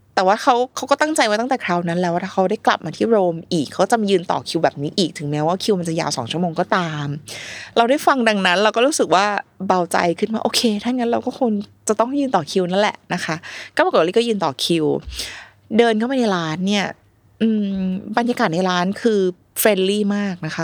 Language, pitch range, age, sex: Thai, 175-230 Hz, 20-39, female